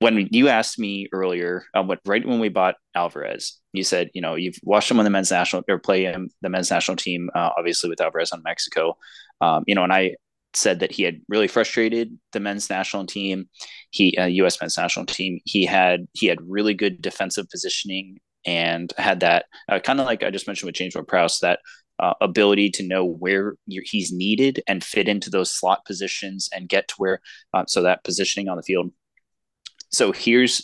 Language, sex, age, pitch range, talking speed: English, male, 20-39, 95-110 Hz, 210 wpm